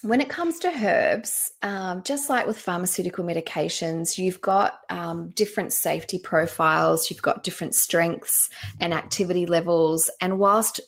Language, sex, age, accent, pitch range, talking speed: English, female, 20-39, Australian, 170-210 Hz, 145 wpm